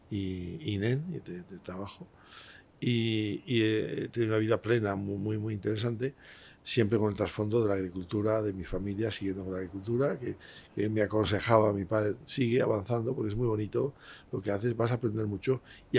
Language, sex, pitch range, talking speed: Spanish, male, 100-120 Hz, 195 wpm